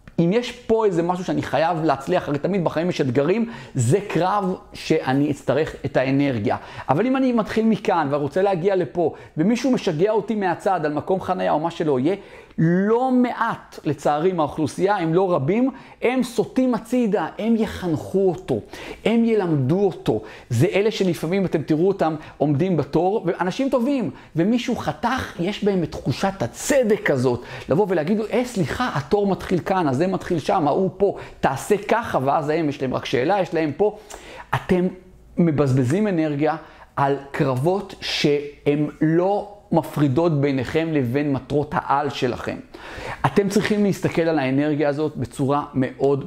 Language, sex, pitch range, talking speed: Hebrew, male, 145-200 Hz, 150 wpm